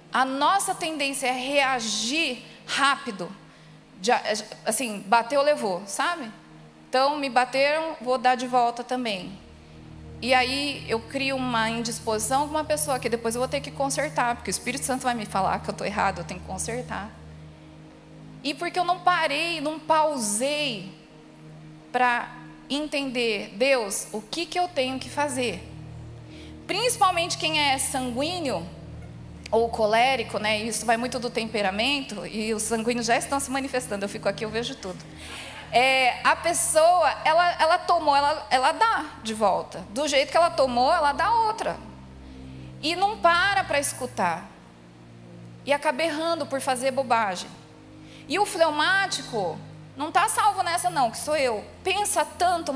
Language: Portuguese